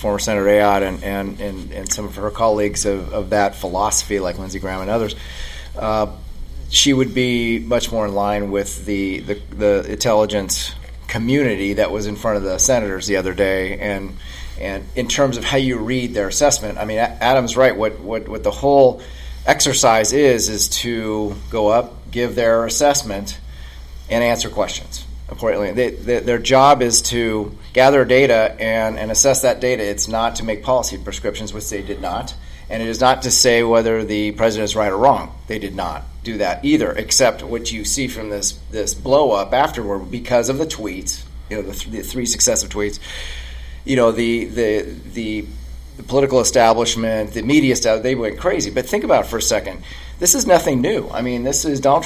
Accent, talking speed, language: American, 195 wpm, English